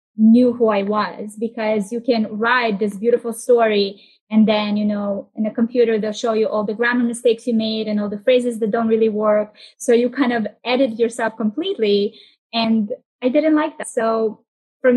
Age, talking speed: 20-39, 195 wpm